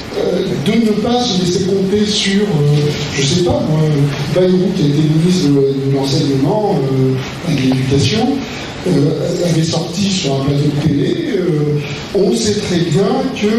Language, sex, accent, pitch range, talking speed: French, male, French, 150-195 Hz, 170 wpm